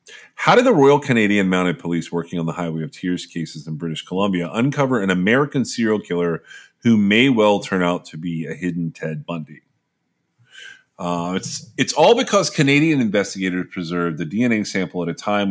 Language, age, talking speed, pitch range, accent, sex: English, 30-49, 180 wpm, 85-110 Hz, American, male